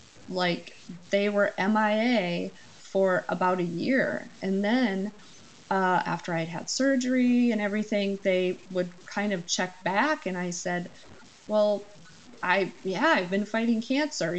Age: 30-49